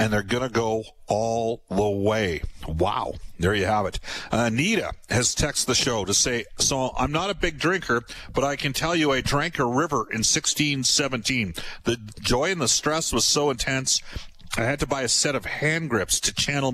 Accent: American